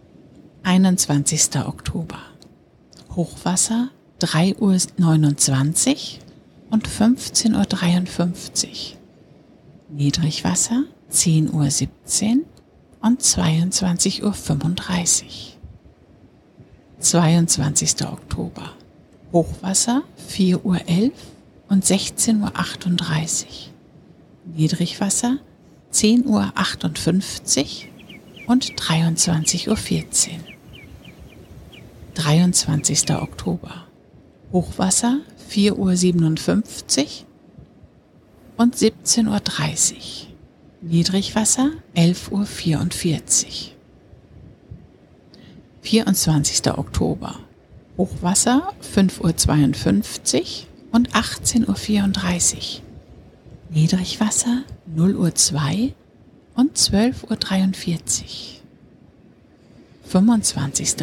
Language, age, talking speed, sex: German, 60-79, 55 wpm, female